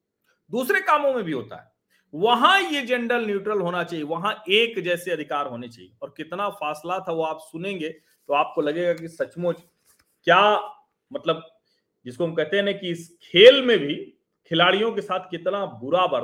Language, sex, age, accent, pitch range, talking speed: Hindi, male, 40-59, native, 145-210 Hz, 75 wpm